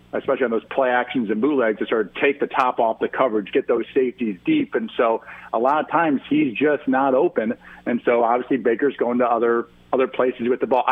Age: 50-69